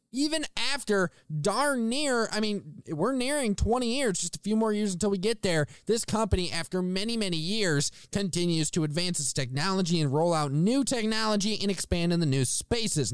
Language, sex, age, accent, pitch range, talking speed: English, male, 20-39, American, 175-235 Hz, 185 wpm